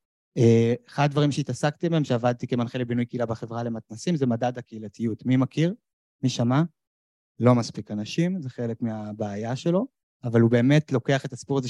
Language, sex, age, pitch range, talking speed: Hebrew, male, 20-39, 120-155 Hz, 160 wpm